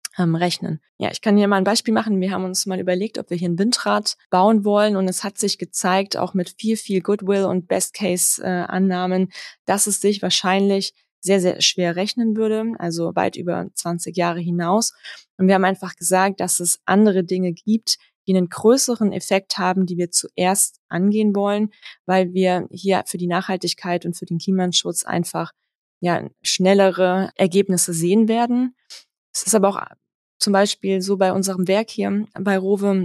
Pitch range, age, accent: 180-200 Hz, 20-39, German